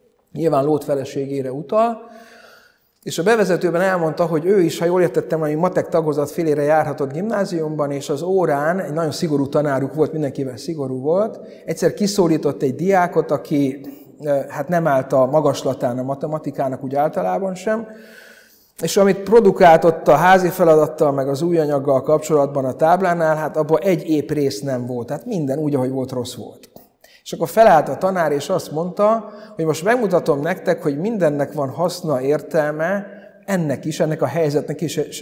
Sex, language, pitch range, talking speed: male, Hungarian, 140-185 Hz, 165 wpm